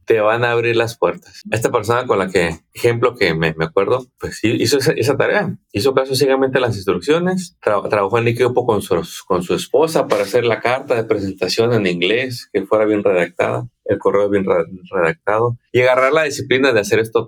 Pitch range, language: 95-130 Hz, Spanish